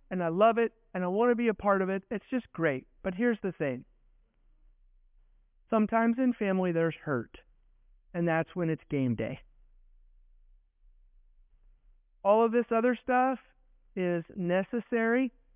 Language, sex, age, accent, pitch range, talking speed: English, male, 50-69, American, 145-220 Hz, 145 wpm